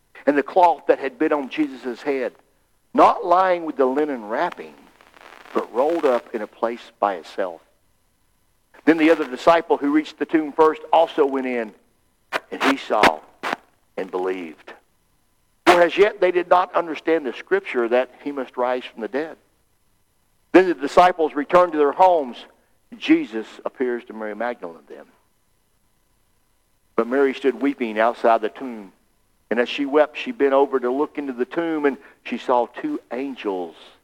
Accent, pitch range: American, 120-180 Hz